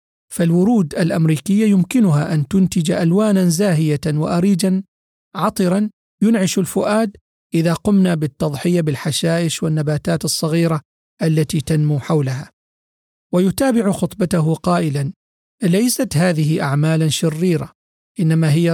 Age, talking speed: 40-59, 95 wpm